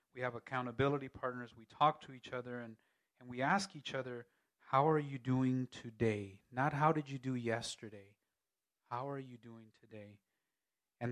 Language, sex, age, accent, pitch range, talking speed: English, male, 30-49, American, 115-135 Hz, 175 wpm